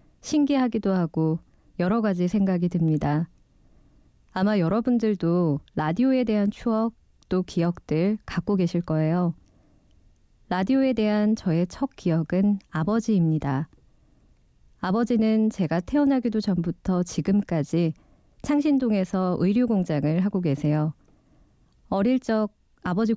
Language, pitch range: Korean, 165-215 Hz